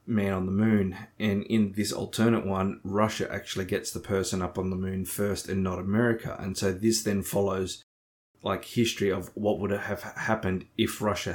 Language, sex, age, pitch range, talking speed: English, male, 20-39, 95-115 Hz, 190 wpm